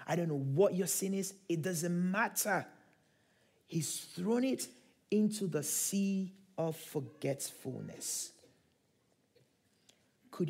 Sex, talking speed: male, 110 wpm